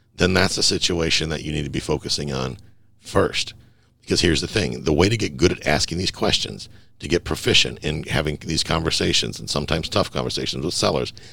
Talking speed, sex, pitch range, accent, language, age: 200 wpm, male, 70-105 Hz, American, English, 50-69